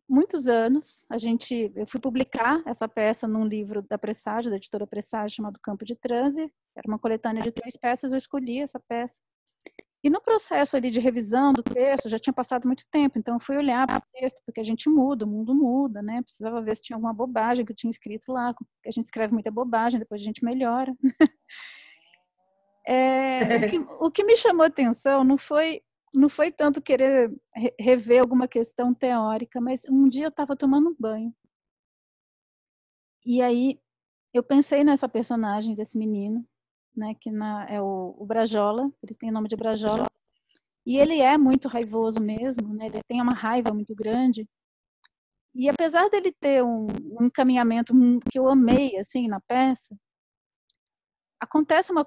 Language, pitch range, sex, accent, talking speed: Portuguese, 225-270 Hz, female, Brazilian, 180 wpm